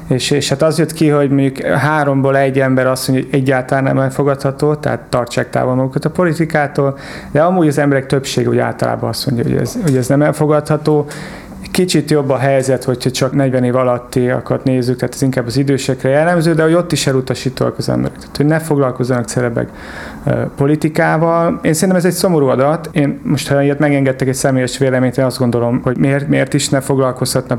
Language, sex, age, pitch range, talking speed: Hungarian, male, 30-49, 125-145 Hz, 195 wpm